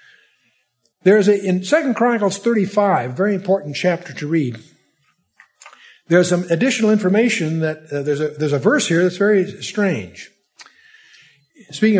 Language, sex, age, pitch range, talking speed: English, male, 60-79, 160-225 Hz, 140 wpm